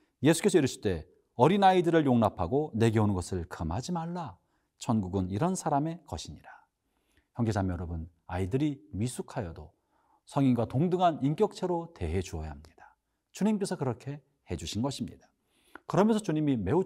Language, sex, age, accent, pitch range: Korean, male, 40-59, native, 105-175 Hz